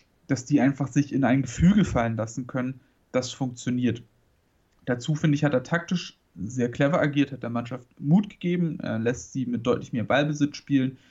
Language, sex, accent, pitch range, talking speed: German, male, German, 120-145 Hz, 180 wpm